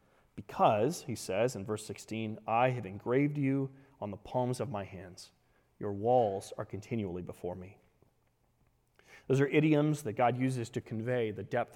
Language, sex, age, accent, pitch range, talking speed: English, male, 30-49, American, 125-160 Hz, 165 wpm